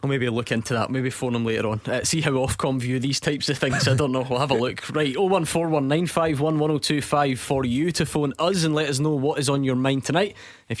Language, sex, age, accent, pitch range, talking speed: English, male, 20-39, British, 115-140 Hz, 240 wpm